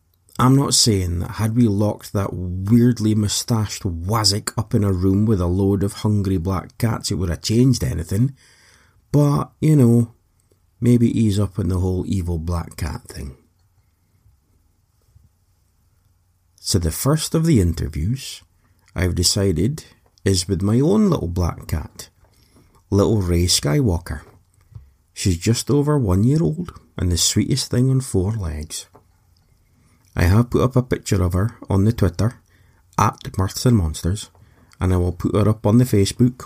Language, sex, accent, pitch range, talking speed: English, male, British, 90-115 Hz, 155 wpm